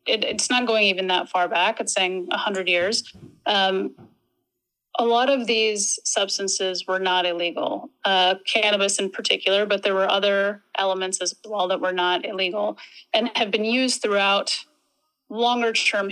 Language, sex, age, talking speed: English, female, 30-49, 155 wpm